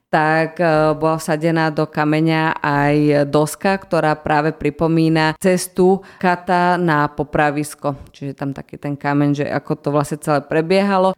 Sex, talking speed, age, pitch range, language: female, 135 wpm, 20-39, 150-170 Hz, Slovak